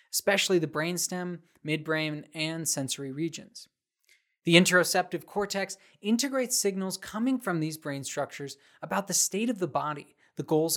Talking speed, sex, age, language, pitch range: 140 wpm, male, 20-39, English, 145-190 Hz